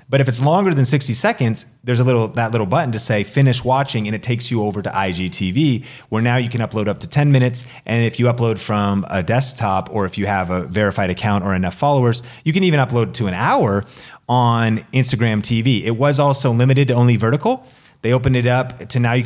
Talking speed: 230 wpm